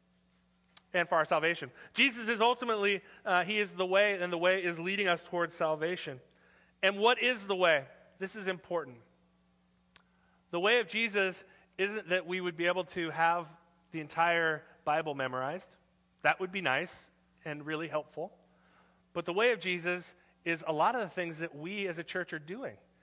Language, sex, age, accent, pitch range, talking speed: English, male, 30-49, American, 155-195 Hz, 180 wpm